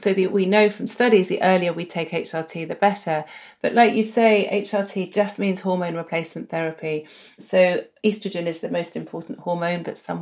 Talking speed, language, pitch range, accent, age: 180 wpm, English, 175-215 Hz, British, 40-59